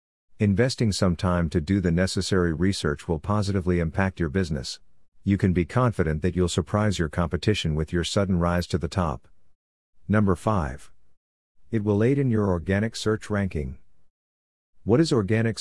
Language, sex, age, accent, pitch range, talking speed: English, male, 50-69, American, 85-100 Hz, 160 wpm